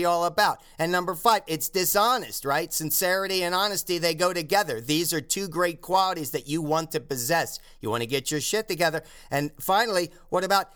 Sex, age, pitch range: male, 40-59, 155-195 Hz